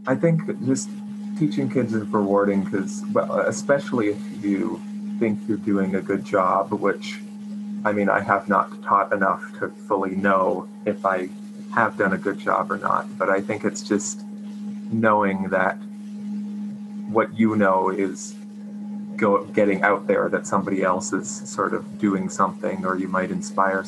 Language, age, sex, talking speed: English, 30-49, male, 165 wpm